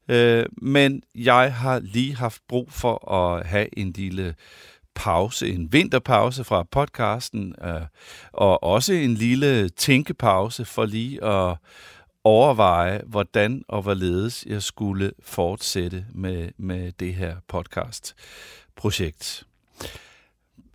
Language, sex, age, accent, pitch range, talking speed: Danish, male, 50-69, native, 95-120 Hz, 100 wpm